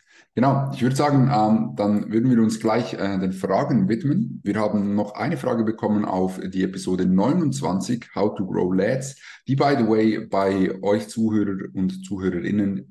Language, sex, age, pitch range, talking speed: German, male, 20-39, 90-105 Hz, 170 wpm